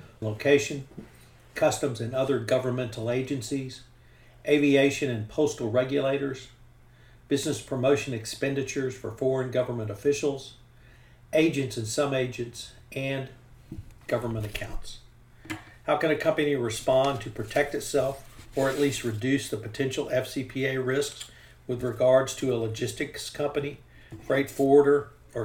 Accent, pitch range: American, 115-140 Hz